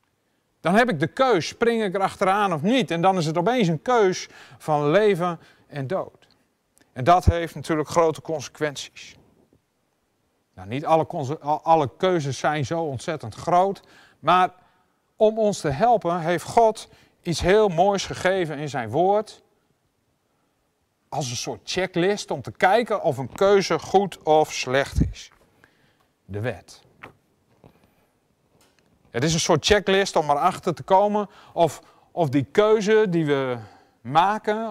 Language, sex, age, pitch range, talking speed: Dutch, male, 40-59, 140-190 Hz, 145 wpm